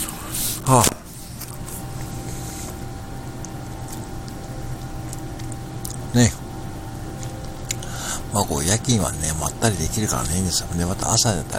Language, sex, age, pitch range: Japanese, male, 60-79, 80-100 Hz